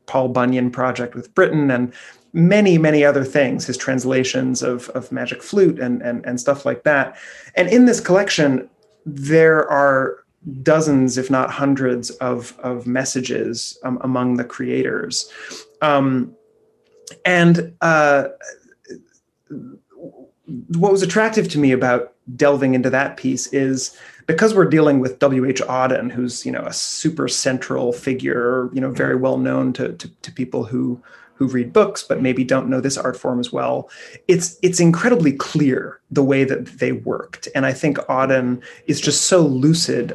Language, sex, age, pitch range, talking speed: English, male, 30-49, 125-155 Hz, 155 wpm